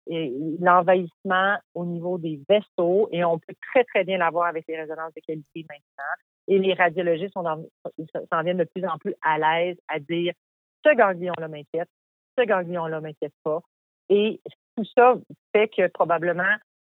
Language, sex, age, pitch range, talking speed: French, female, 40-59, 165-210 Hz, 155 wpm